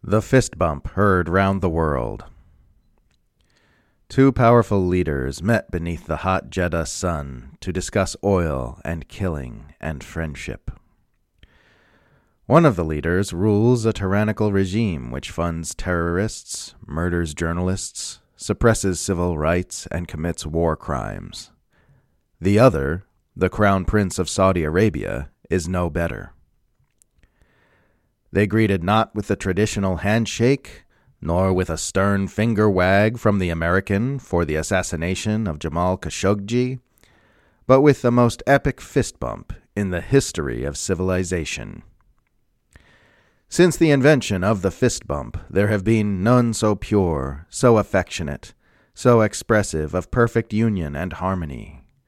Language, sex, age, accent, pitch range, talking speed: English, male, 40-59, American, 85-110 Hz, 125 wpm